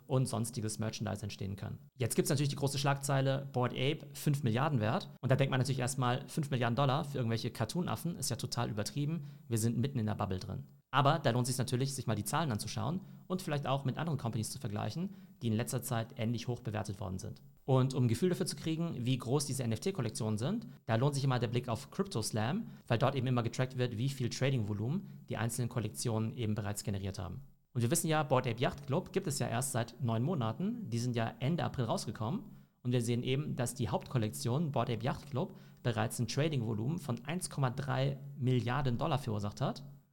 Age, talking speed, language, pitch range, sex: 40-59, 215 wpm, German, 115-140 Hz, male